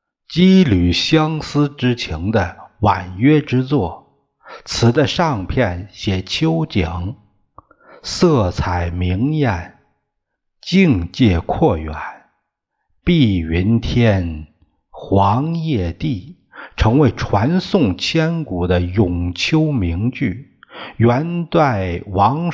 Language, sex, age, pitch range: Chinese, male, 50-69, 90-140 Hz